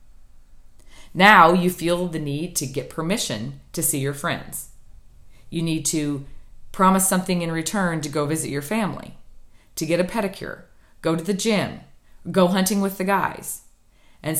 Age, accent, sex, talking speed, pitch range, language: 40-59, American, female, 160 wpm, 145-185 Hz, English